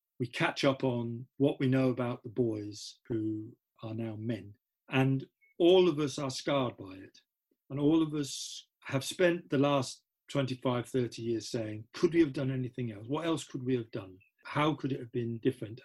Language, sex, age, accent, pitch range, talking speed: English, male, 40-59, British, 115-145 Hz, 195 wpm